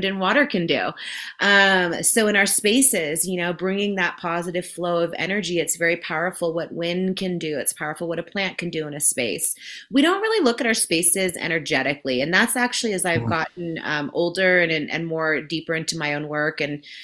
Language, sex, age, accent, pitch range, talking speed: English, female, 30-49, American, 170-220 Hz, 210 wpm